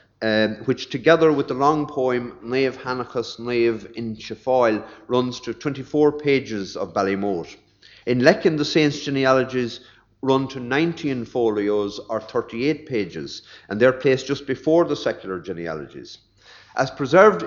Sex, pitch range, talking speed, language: male, 105-135 Hz, 135 wpm, English